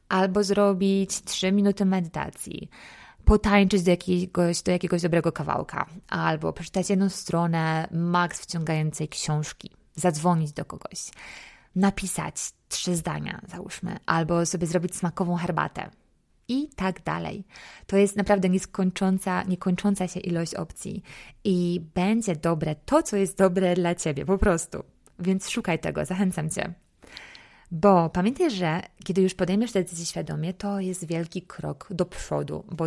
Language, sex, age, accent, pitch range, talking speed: Polish, female, 20-39, native, 165-195 Hz, 135 wpm